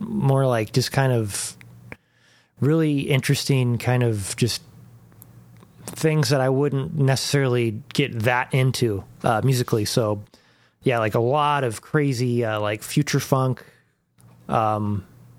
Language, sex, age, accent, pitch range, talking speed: English, male, 30-49, American, 110-130 Hz, 125 wpm